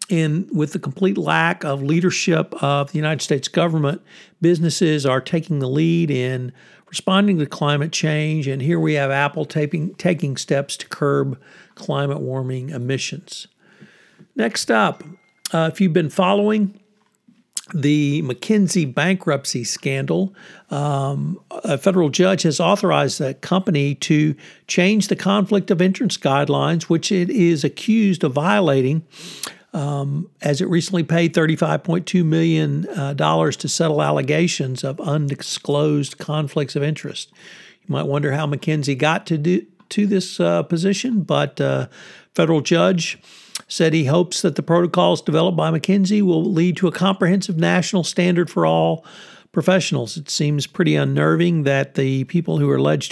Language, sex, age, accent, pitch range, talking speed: English, male, 60-79, American, 145-180 Hz, 145 wpm